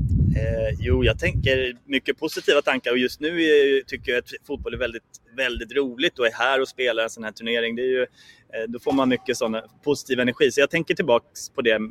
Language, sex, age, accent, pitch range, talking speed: Swedish, male, 20-39, native, 105-125 Hz, 225 wpm